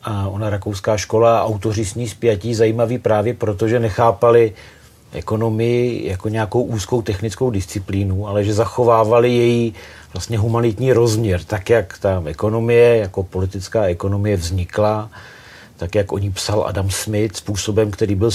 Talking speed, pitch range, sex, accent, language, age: 145 wpm, 100-115 Hz, male, native, Czech, 40-59